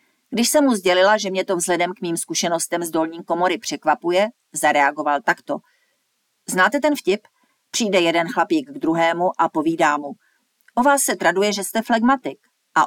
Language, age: Czech, 40-59